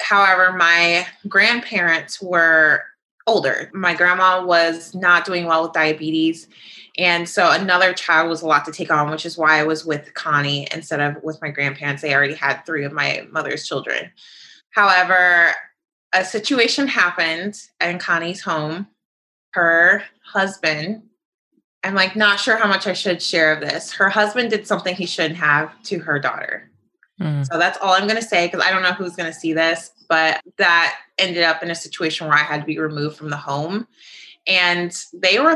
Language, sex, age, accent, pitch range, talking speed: English, female, 20-39, American, 160-190 Hz, 180 wpm